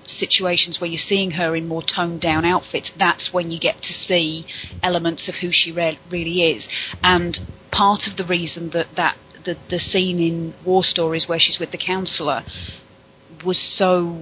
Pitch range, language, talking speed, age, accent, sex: 170-195 Hz, English, 175 wpm, 30-49, British, female